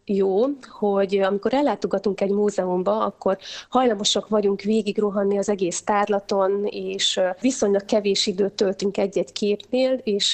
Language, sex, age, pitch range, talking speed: Hungarian, female, 30-49, 195-215 Hz, 120 wpm